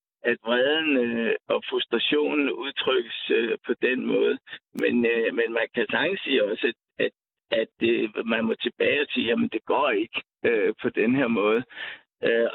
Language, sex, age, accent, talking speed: Danish, male, 60-79, native, 170 wpm